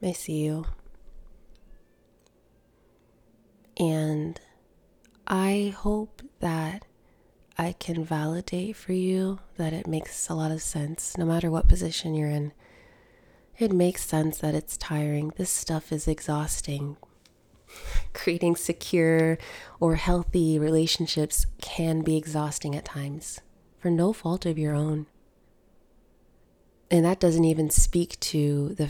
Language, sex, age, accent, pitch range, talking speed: English, female, 20-39, American, 150-180 Hz, 120 wpm